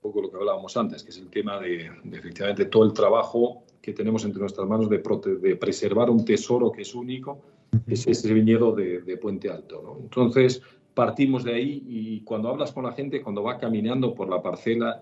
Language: Spanish